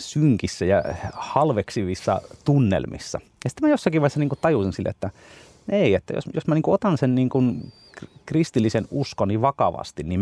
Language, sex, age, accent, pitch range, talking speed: Finnish, male, 30-49, native, 90-120 Hz, 155 wpm